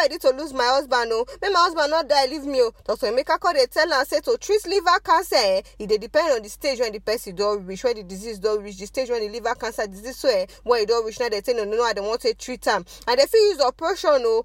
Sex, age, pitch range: female, 20-39, 245-370 Hz